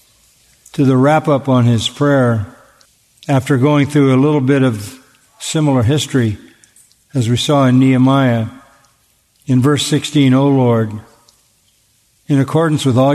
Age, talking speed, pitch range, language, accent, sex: 50-69, 130 wpm, 115-145 Hz, English, American, male